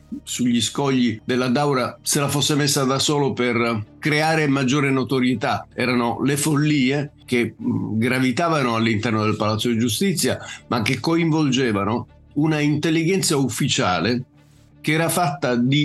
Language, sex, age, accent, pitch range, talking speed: Italian, male, 50-69, native, 120-150 Hz, 125 wpm